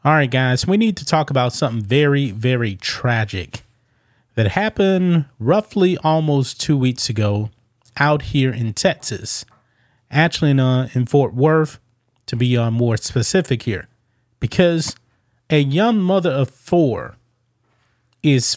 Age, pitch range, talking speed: 30-49, 120-155 Hz, 135 wpm